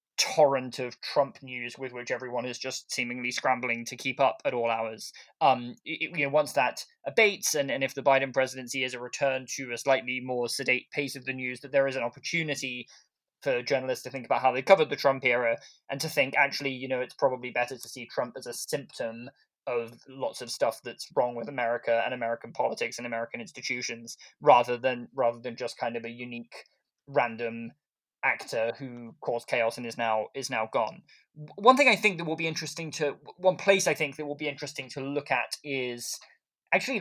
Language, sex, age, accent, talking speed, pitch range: English, male, 20-39, British, 210 wpm, 125-150 Hz